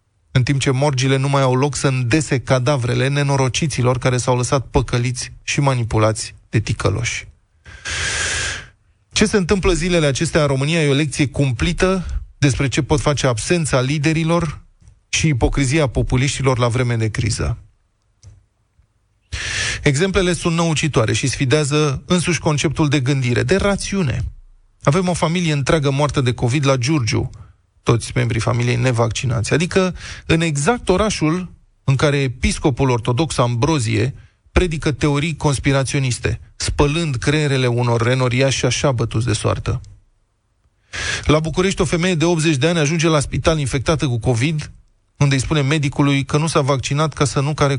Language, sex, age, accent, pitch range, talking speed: Romanian, male, 20-39, native, 115-150 Hz, 145 wpm